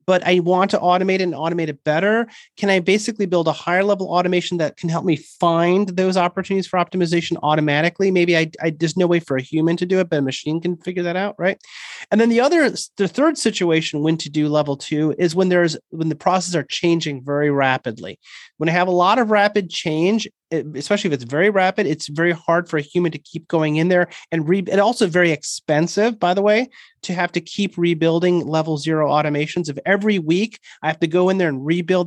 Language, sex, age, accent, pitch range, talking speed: English, male, 30-49, American, 160-200 Hz, 225 wpm